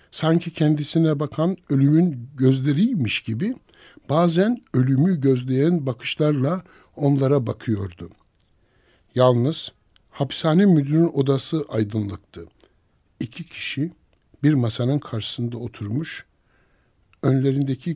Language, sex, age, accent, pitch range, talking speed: Turkish, male, 60-79, native, 125-170 Hz, 80 wpm